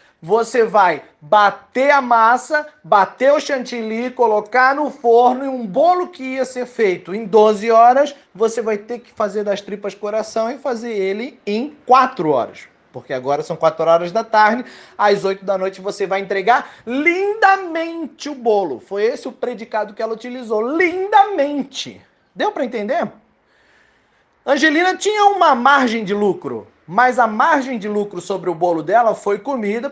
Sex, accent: male, Brazilian